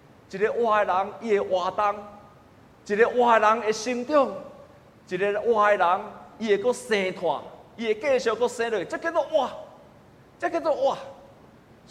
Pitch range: 145-225 Hz